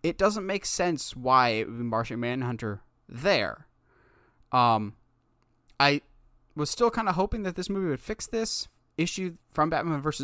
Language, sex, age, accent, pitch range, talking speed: English, male, 20-39, American, 120-155 Hz, 165 wpm